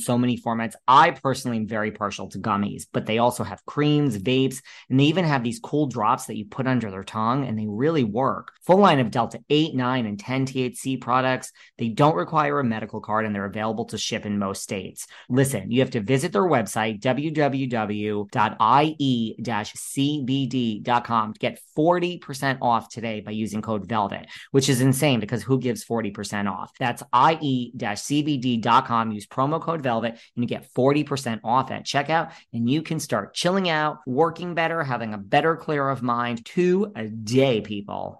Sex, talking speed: male, 180 wpm